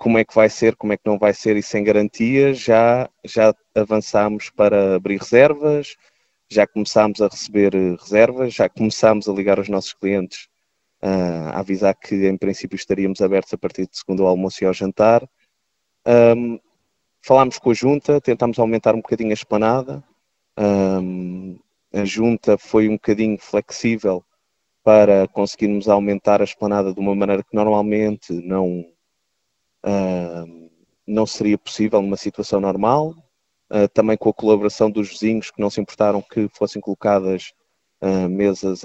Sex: male